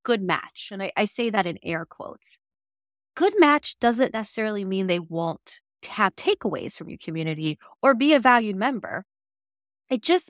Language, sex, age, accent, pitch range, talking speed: English, female, 30-49, American, 180-270 Hz, 170 wpm